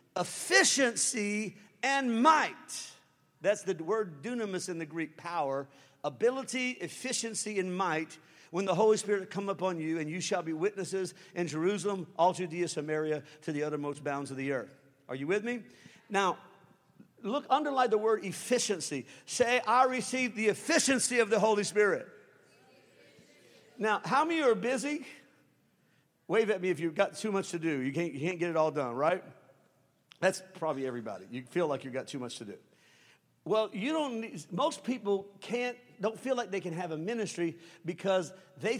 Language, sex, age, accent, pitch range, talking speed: English, male, 50-69, American, 165-220 Hz, 175 wpm